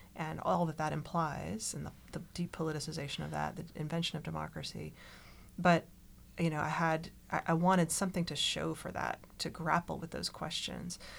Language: English